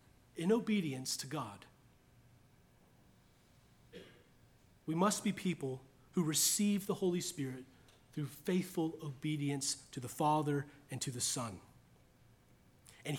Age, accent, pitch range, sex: 30-49, American, 145-225 Hz, male